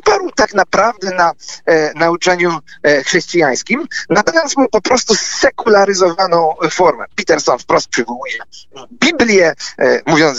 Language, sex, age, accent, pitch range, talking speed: Polish, male, 40-59, native, 160-245 Hz, 90 wpm